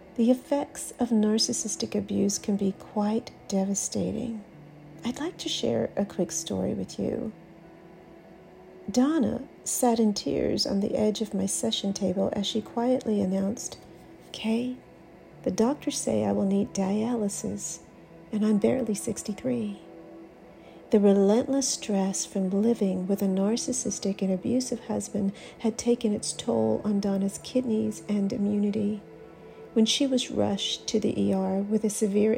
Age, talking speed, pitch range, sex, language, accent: 50-69, 140 wpm, 195-230 Hz, female, English, American